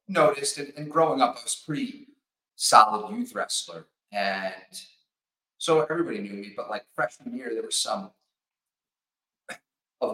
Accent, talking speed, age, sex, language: American, 135 wpm, 30-49, male, English